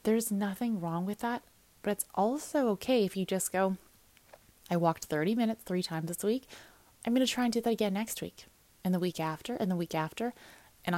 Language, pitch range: English, 170-210 Hz